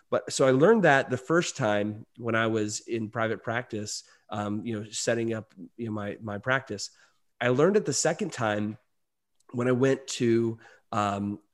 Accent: American